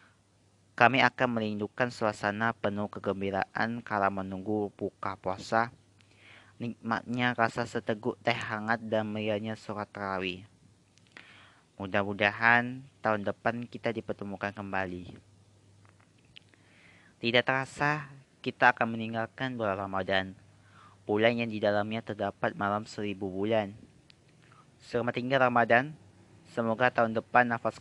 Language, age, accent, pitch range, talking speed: Indonesian, 20-39, native, 100-115 Hz, 100 wpm